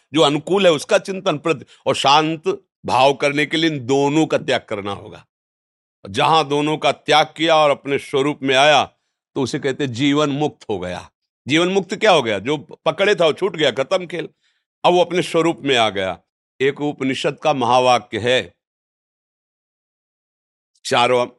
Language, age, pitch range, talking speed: Hindi, 50-69, 120-165 Hz, 170 wpm